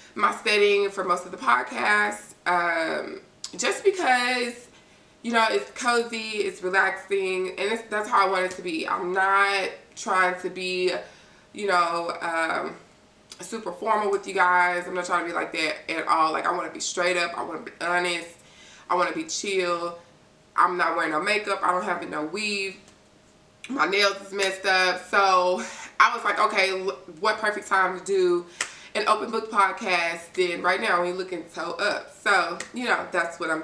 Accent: American